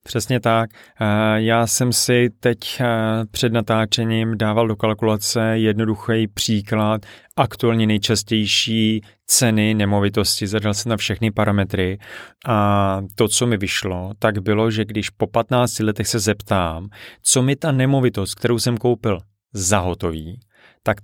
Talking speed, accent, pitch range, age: 130 wpm, native, 100-115 Hz, 30-49